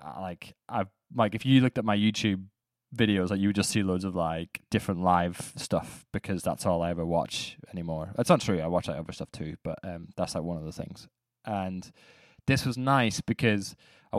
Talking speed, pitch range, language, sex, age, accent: 215 wpm, 95-115 Hz, English, male, 20-39, British